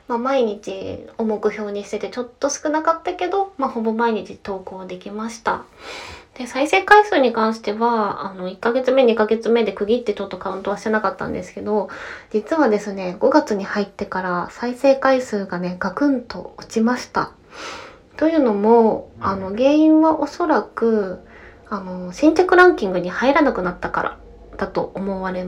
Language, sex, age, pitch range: Japanese, female, 20-39, 195-275 Hz